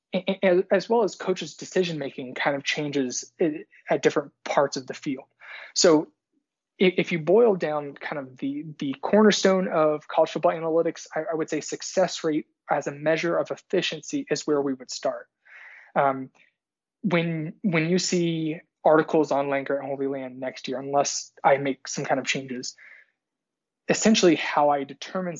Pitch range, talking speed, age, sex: 140-175 Hz, 160 wpm, 20-39, male